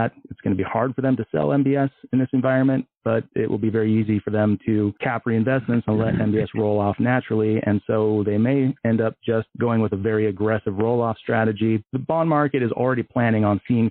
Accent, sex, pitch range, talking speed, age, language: American, male, 105-125 Hz, 230 wpm, 30-49, English